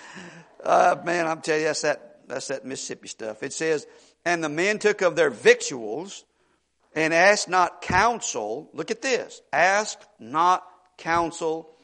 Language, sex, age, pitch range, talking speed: English, male, 50-69, 140-180 Hz, 150 wpm